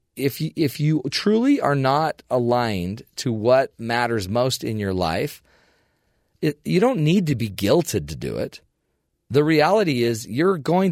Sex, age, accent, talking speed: male, 40-59, American, 165 wpm